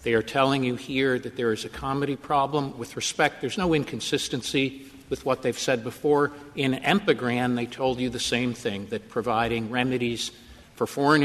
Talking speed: 180 wpm